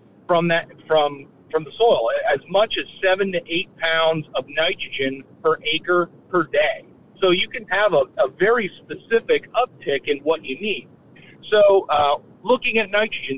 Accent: American